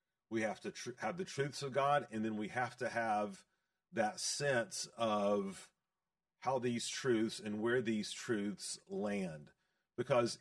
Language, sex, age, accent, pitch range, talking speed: English, male, 40-59, American, 115-185 Hz, 155 wpm